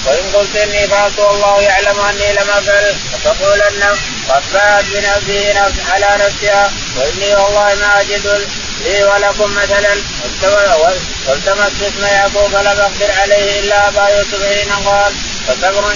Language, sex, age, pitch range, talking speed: Arabic, male, 20-39, 200-205 Hz, 130 wpm